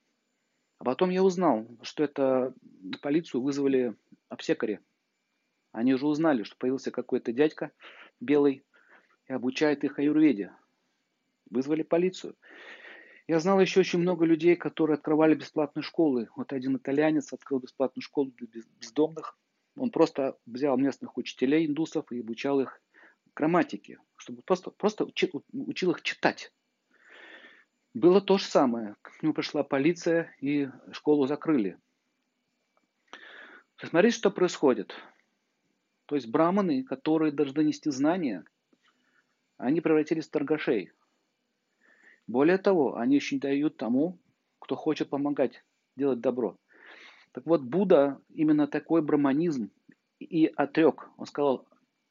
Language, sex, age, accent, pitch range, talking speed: Russian, male, 40-59, native, 135-185 Hz, 120 wpm